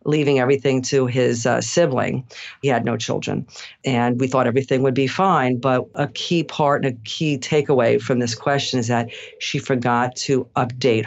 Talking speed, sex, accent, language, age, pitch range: 185 wpm, female, American, English, 50-69, 120-135 Hz